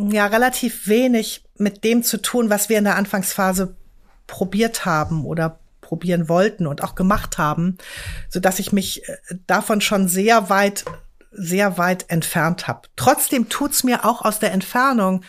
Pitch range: 190-230 Hz